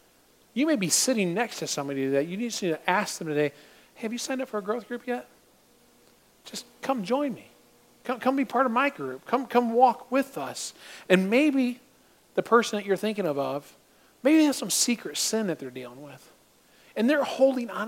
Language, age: English, 40-59